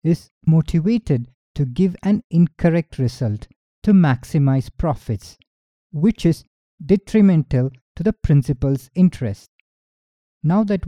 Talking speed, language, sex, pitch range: 105 wpm, English, male, 130-175 Hz